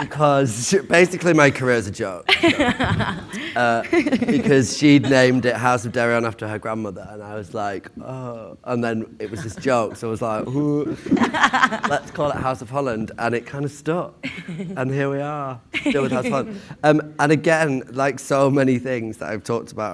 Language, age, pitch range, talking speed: English, 30-49, 95-130 Hz, 195 wpm